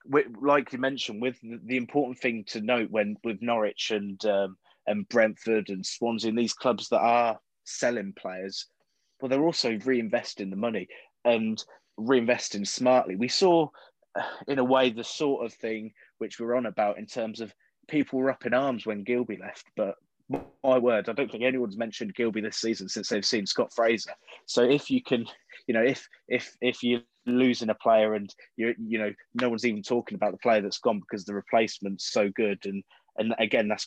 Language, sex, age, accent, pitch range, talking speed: English, male, 20-39, British, 105-125 Hz, 195 wpm